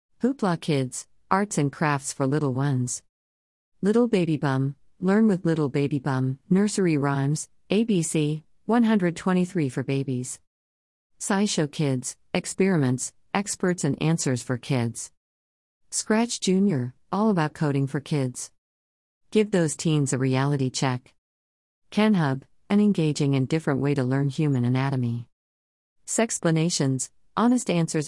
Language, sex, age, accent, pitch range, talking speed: English, female, 50-69, American, 130-175 Hz, 120 wpm